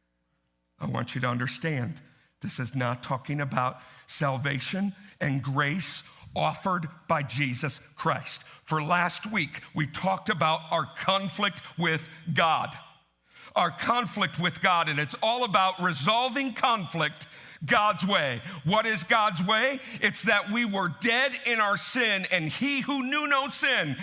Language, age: English, 50-69